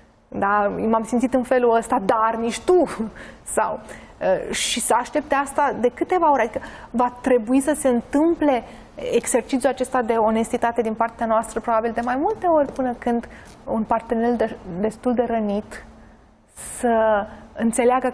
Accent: native